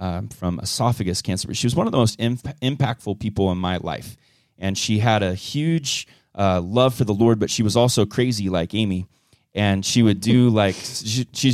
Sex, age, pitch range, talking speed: male, 30-49, 95-120 Hz, 215 wpm